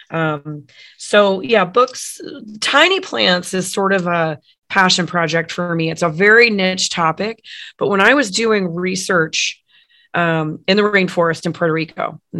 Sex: female